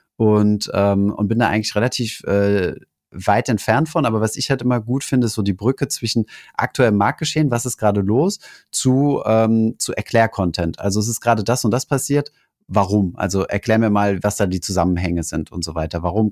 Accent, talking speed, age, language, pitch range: German, 195 wpm, 30-49, German, 95-115 Hz